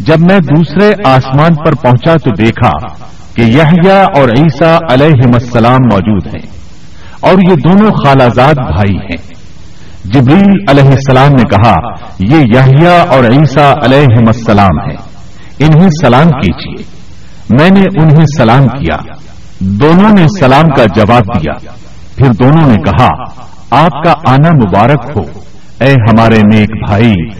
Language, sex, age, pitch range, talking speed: Urdu, male, 50-69, 110-155 Hz, 135 wpm